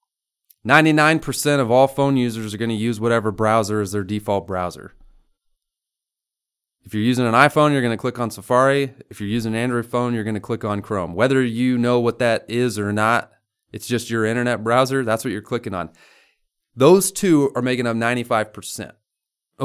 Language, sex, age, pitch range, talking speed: English, male, 30-49, 105-130 Hz, 185 wpm